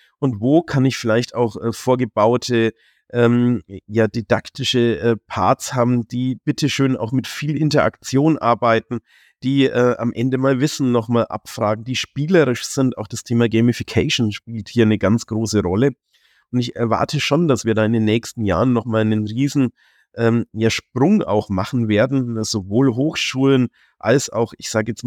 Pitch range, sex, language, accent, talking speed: 105-120 Hz, male, German, German, 165 wpm